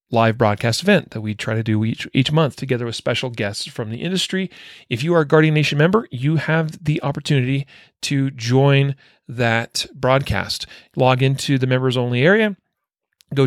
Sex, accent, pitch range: male, American, 120-160 Hz